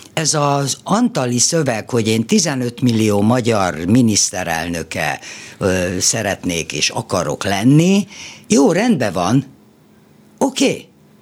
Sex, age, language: female, 60-79, Hungarian